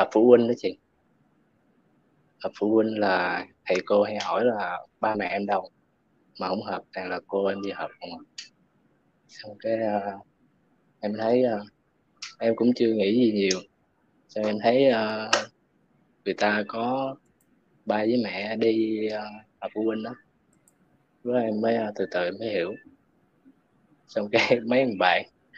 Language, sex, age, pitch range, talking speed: Vietnamese, male, 20-39, 105-120 Hz, 150 wpm